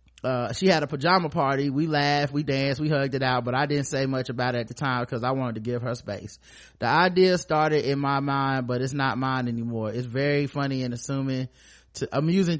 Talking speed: 230 wpm